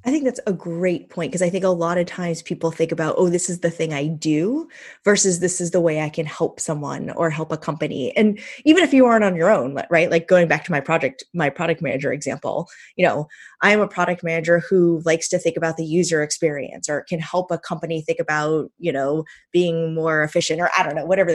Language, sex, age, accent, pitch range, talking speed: English, female, 20-39, American, 160-195 Hz, 240 wpm